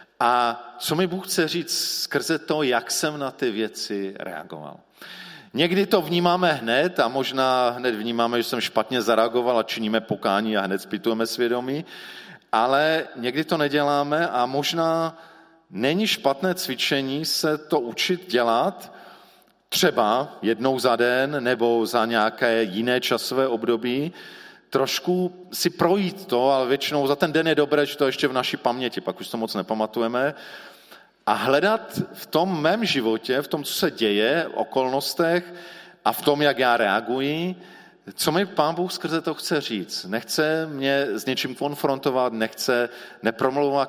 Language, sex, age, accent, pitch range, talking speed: Czech, male, 40-59, native, 120-165 Hz, 155 wpm